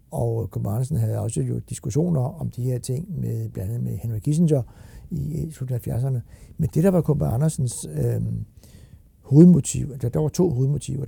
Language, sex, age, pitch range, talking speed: Danish, male, 60-79, 110-145 Hz, 170 wpm